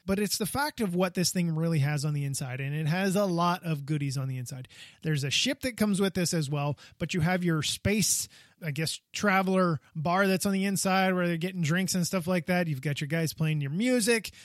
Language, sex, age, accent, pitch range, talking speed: English, male, 20-39, American, 145-195 Hz, 250 wpm